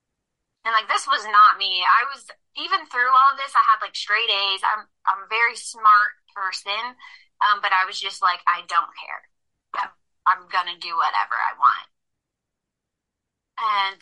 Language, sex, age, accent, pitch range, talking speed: English, female, 20-39, American, 190-225 Hz, 175 wpm